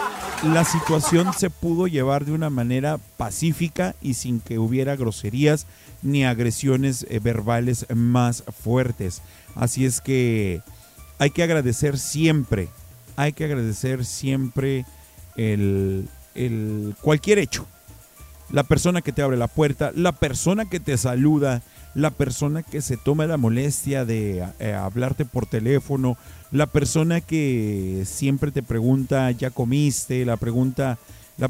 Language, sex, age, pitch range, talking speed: Spanish, male, 40-59, 120-150 Hz, 130 wpm